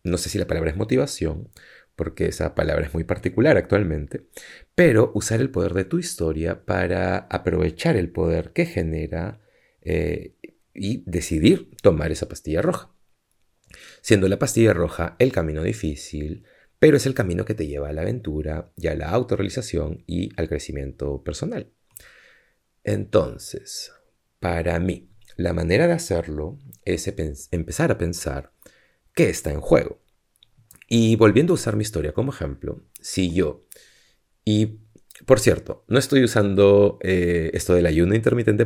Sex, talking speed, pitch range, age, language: male, 145 wpm, 85-110 Hz, 30-49, Spanish